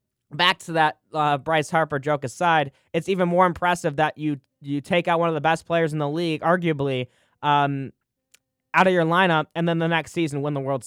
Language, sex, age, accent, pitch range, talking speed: English, male, 20-39, American, 140-175 Hz, 215 wpm